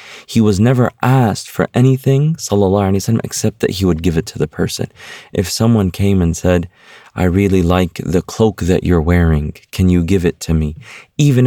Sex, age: male, 30-49